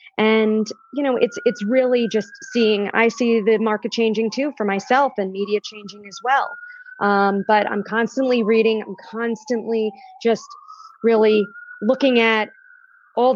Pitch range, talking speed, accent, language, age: 200-245 Hz, 150 wpm, American, English, 30-49